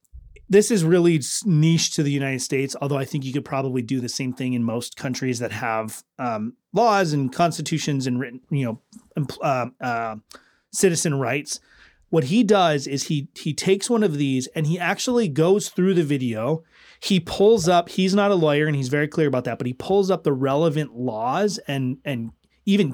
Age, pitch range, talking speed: 30-49, 135-175 Hz, 200 wpm